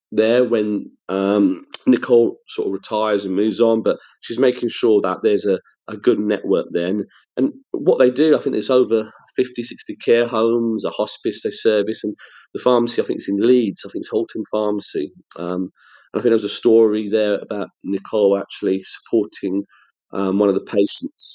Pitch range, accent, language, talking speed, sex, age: 95-120 Hz, British, English, 190 wpm, male, 40-59